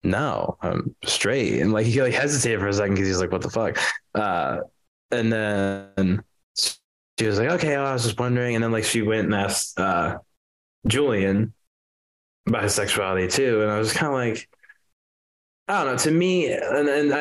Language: English